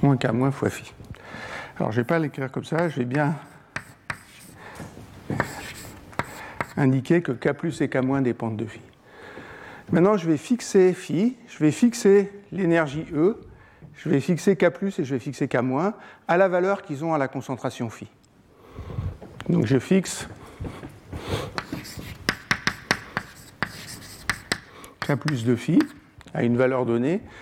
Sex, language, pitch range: male, French, 130-180 Hz